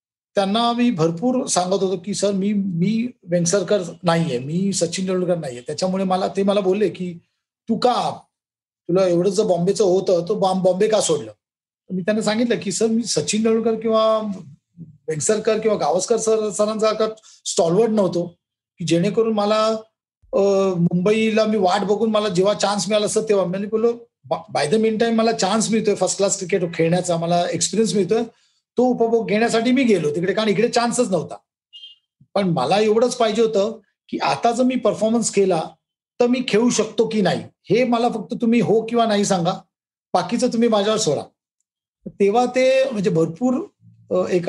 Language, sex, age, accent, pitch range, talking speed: Marathi, male, 40-59, native, 185-230 Hz, 165 wpm